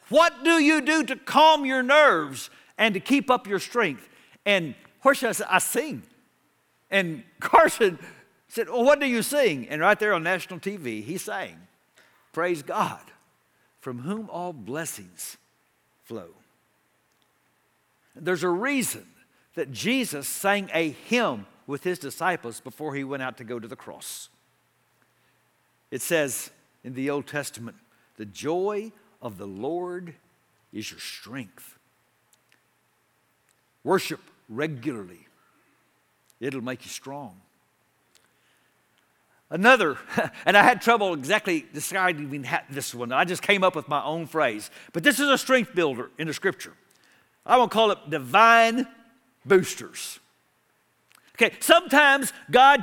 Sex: male